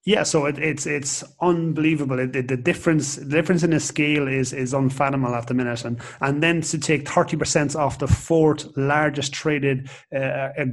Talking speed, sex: 190 wpm, male